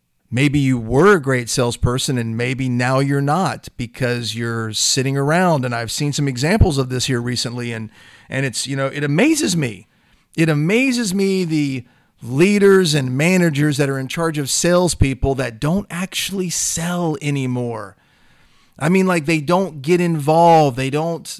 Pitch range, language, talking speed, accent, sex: 130-165 Hz, English, 165 wpm, American, male